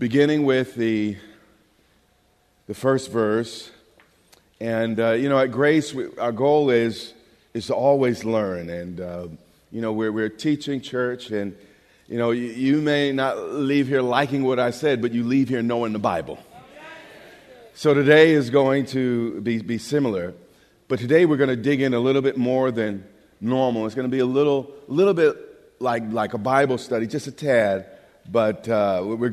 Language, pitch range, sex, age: English, 110-135 Hz, male, 40-59